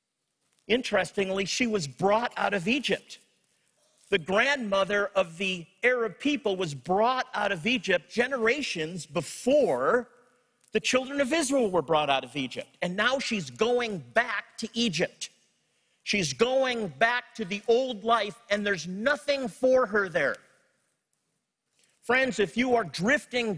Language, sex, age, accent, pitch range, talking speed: English, male, 50-69, American, 185-235 Hz, 135 wpm